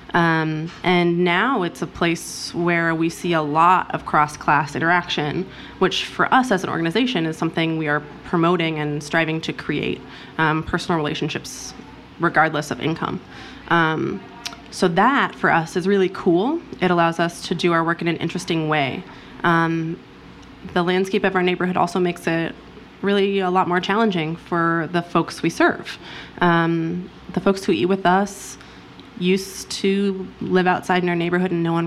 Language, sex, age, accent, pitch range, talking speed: English, female, 20-39, American, 165-190 Hz, 170 wpm